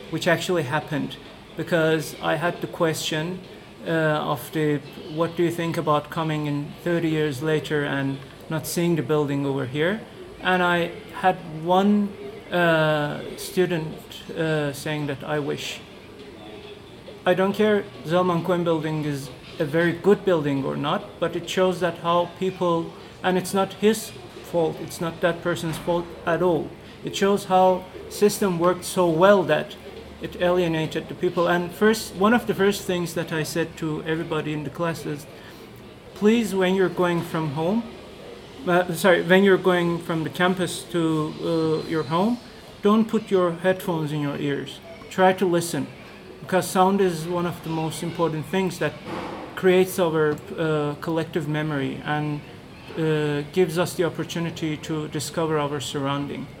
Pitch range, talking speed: 155-185 Hz, 160 wpm